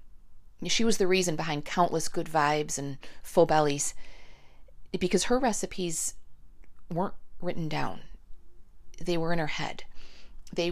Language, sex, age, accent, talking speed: English, female, 40-59, American, 130 wpm